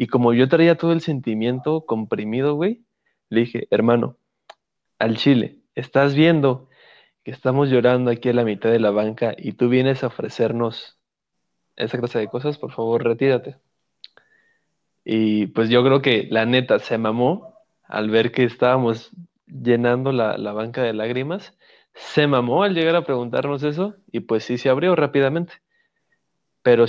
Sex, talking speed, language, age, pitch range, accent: male, 160 wpm, Spanish, 20-39, 120-170 Hz, Mexican